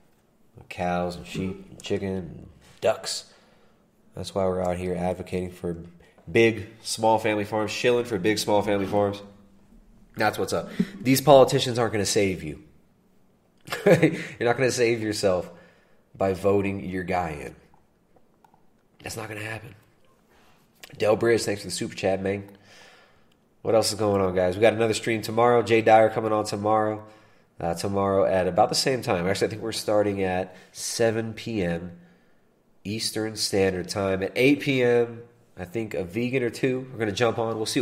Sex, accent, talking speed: male, American, 170 wpm